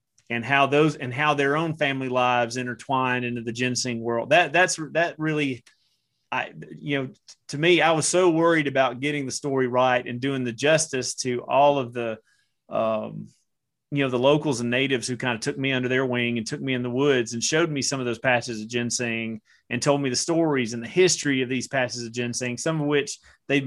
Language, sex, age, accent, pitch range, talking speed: English, male, 30-49, American, 120-145 Hz, 220 wpm